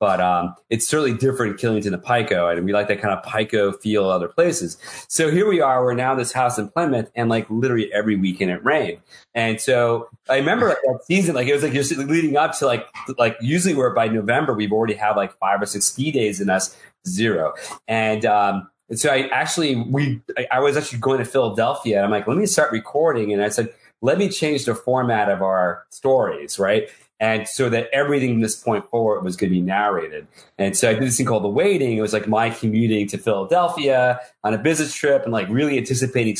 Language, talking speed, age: English, 225 wpm, 30-49